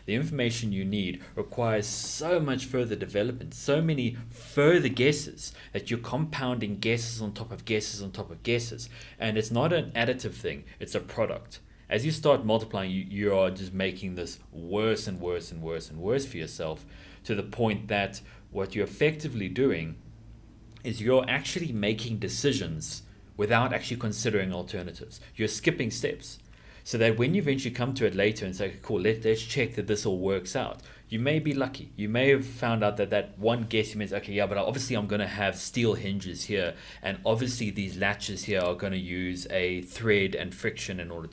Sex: male